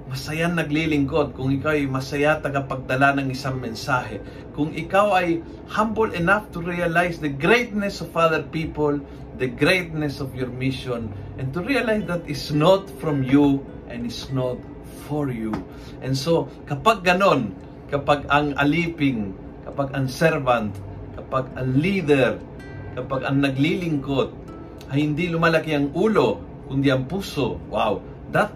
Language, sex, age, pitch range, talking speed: Filipino, male, 50-69, 130-155 Hz, 140 wpm